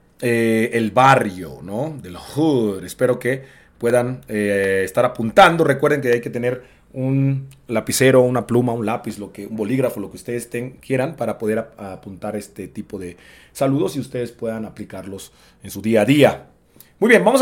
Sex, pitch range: male, 105-155 Hz